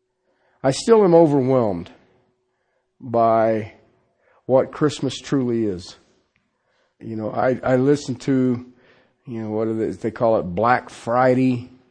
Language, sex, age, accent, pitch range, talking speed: English, male, 50-69, American, 120-150 Hz, 125 wpm